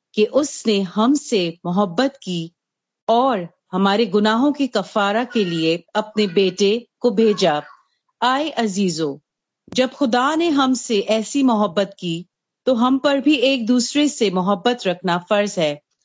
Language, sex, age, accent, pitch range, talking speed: Hindi, female, 40-59, native, 185-255 Hz, 135 wpm